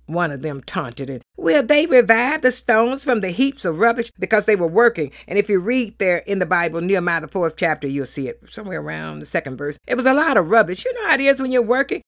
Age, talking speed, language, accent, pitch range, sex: 50-69, 265 wpm, English, American, 170-240 Hz, female